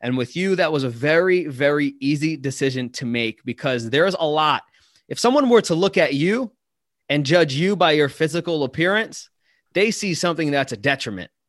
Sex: male